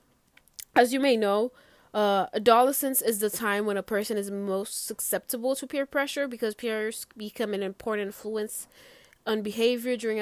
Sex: female